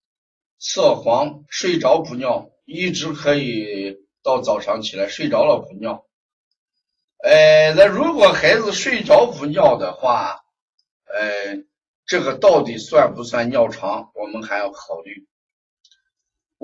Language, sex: Chinese, male